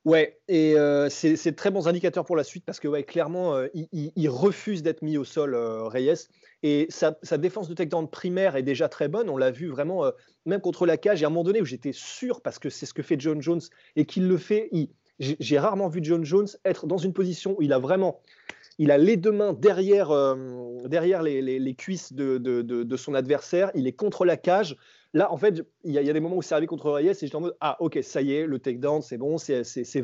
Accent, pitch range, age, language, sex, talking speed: French, 145-190 Hz, 30-49, French, male, 270 wpm